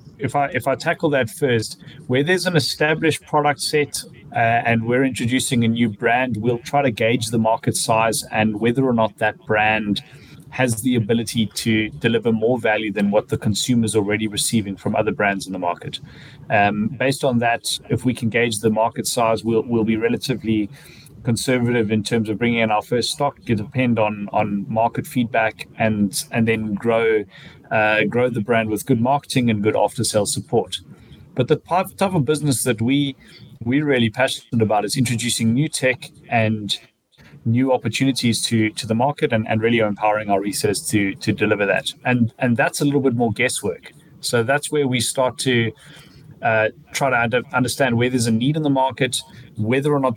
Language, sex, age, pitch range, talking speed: English, male, 30-49, 110-135 Hz, 190 wpm